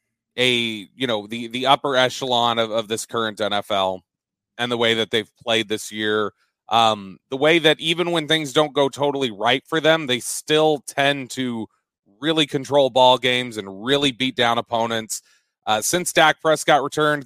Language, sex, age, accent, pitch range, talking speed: English, male, 30-49, American, 120-155 Hz, 175 wpm